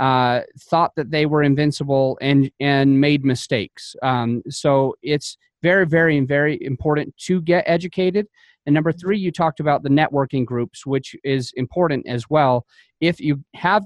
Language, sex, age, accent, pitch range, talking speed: English, male, 30-49, American, 135-160 Hz, 160 wpm